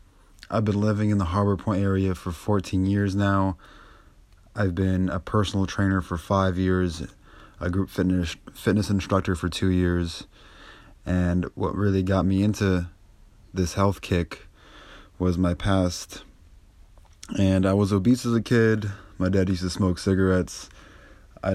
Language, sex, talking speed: English, male, 150 wpm